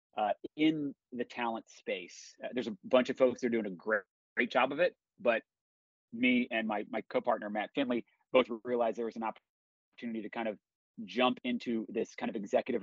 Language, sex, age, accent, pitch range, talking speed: English, male, 30-49, American, 115-135 Hz, 200 wpm